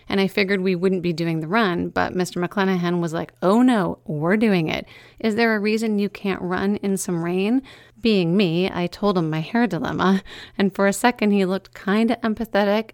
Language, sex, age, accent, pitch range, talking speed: English, female, 30-49, American, 170-195 Hz, 215 wpm